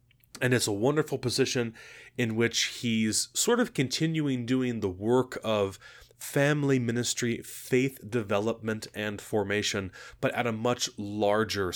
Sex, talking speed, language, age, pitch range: male, 135 wpm, English, 30-49, 100-120 Hz